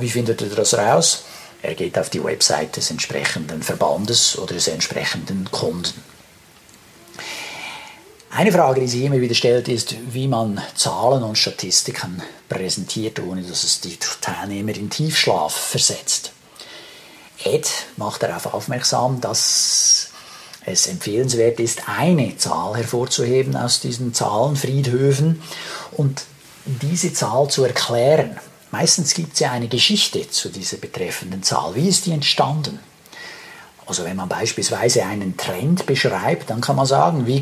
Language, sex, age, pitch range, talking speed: German, male, 50-69, 115-155 Hz, 135 wpm